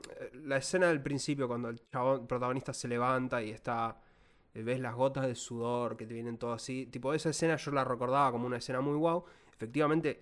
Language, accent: Spanish, Argentinian